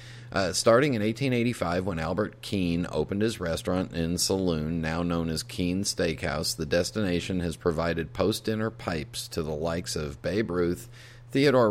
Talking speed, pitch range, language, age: 155 wpm, 85-115 Hz, English, 40-59